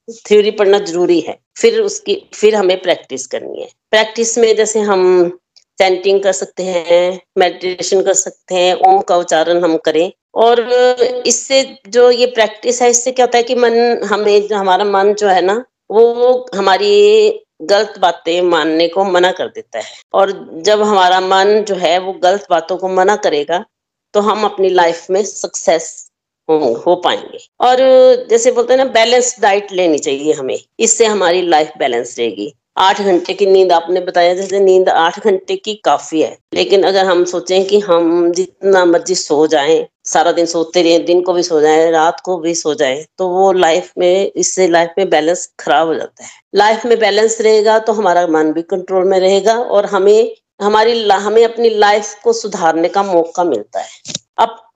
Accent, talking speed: native, 145 wpm